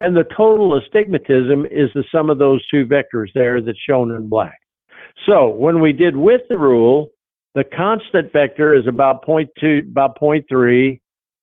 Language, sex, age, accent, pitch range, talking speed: English, male, 50-69, American, 130-160 Hz, 160 wpm